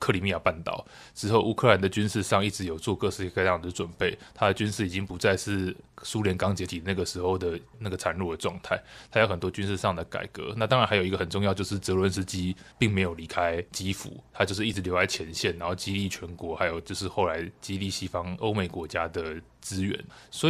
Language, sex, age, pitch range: Chinese, male, 20-39, 90-110 Hz